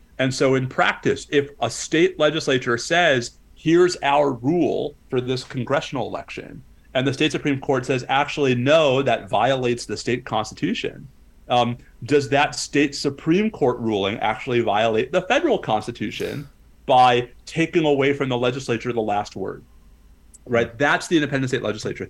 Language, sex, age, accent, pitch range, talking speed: English, male, 30-49, American, 120-150 Hz, 150 wpm